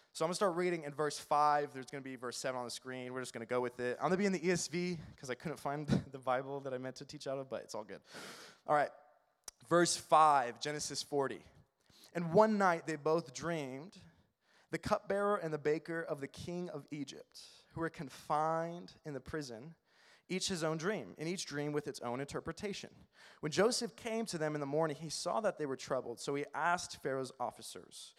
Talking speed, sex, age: 230 wpm, male, 20-39